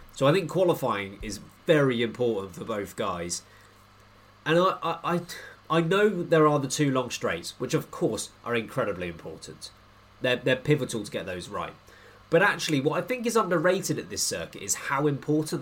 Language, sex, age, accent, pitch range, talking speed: English, male, 30-49, British, 110-155 Hz, 180 wpm